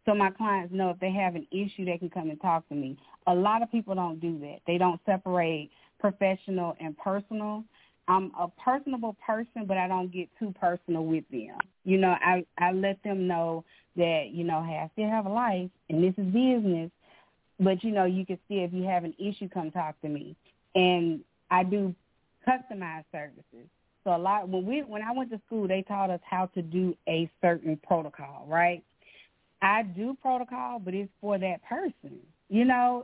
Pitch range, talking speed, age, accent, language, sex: 175-210 Hz, 205 wpm, 30-49, American, English, female